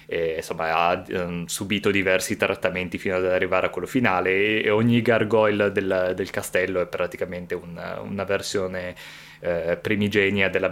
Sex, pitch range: male, 95-105 Hz